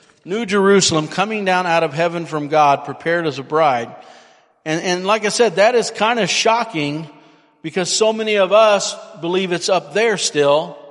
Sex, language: male, English